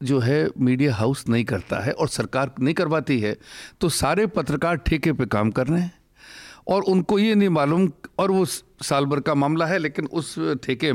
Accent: native